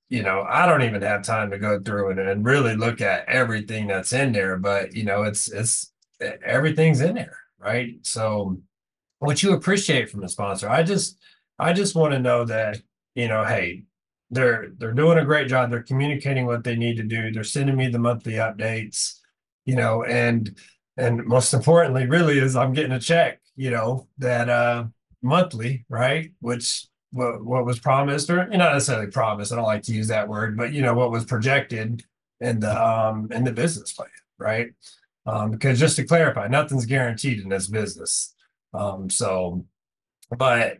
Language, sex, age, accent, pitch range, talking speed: English, male, 30-49, American, 105-140 Hz, 190 wpm